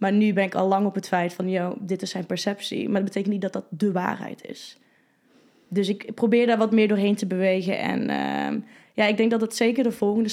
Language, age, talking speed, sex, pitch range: Dutch, 20-39, 250 wpm, female, 190-225 Hz